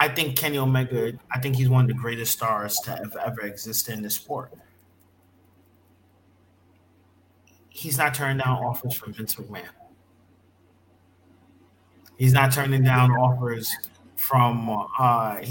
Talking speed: 130 wpm